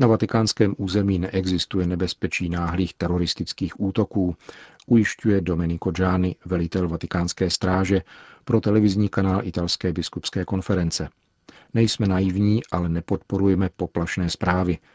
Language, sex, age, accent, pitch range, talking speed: Czech, male, 40-59, native, 90-100 Hz, 105 wpm